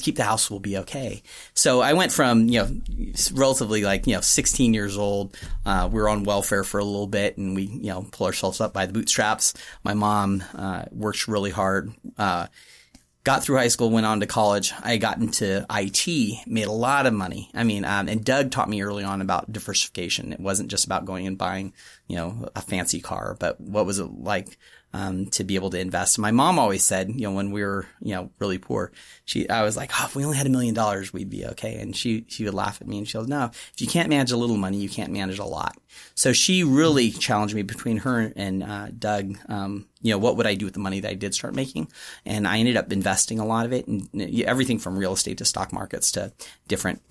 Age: 30-49